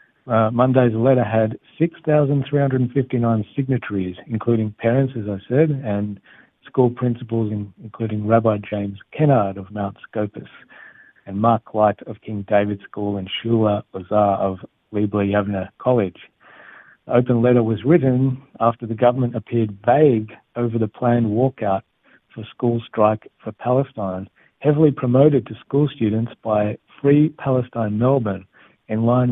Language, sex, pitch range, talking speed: Hebrew, male, 105-125 Hz, 135 wpm